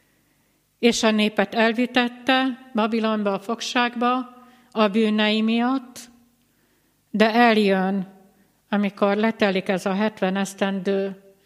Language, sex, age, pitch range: Hungarian, female, 60-79, 195-230 Hz